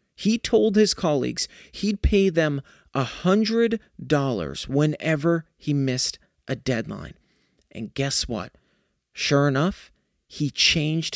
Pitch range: 125-175 Hz